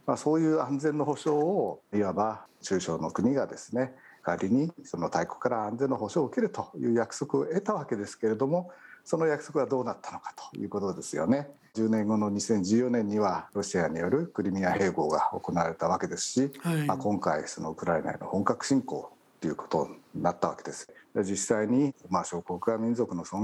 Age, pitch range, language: 60-79, 95-140 Hz, Japanese